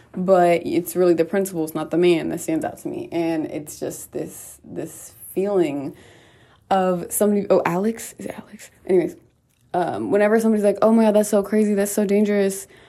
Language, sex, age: English, female, 20-39